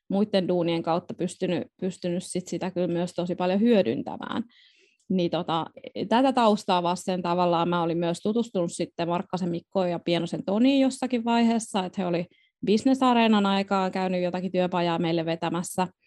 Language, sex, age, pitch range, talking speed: Finnish, female, 20-39, 180-240 Hz, 150 wpm